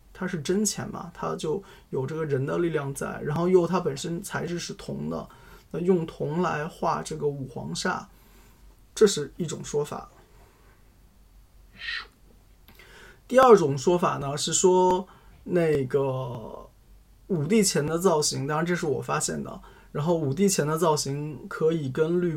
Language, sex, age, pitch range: Chinese, male, 20-39, 140-175 Hz